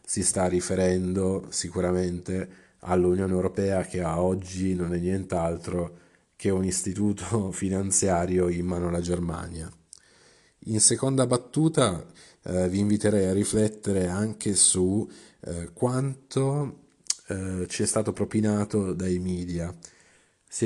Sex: male